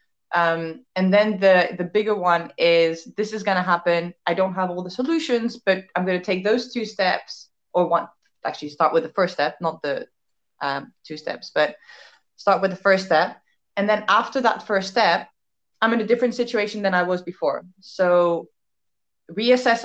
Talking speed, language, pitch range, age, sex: 185 wpm, English, 170-205 Hz, 20-39, female